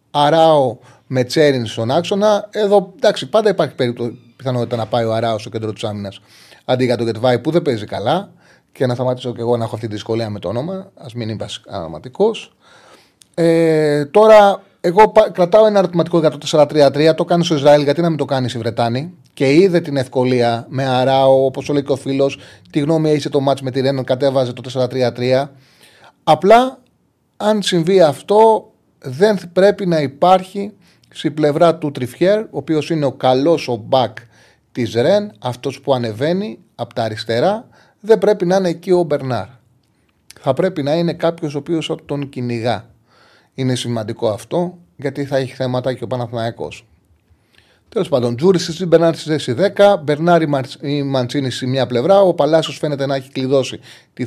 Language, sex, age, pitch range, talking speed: Greek, male, 30-49, 120-170 Hz, 175 wpm